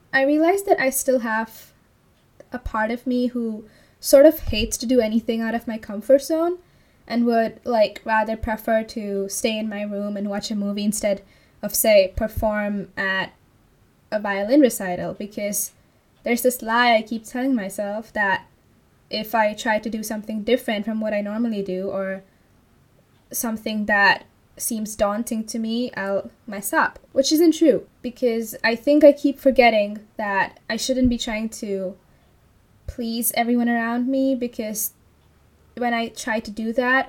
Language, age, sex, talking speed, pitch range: English, 10-29, female, 165 wpm, 210-245 Hz